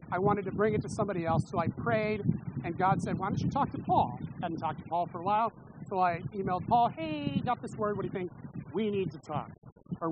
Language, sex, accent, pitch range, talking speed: English, male, American, 165-200 Hz, 265 wpm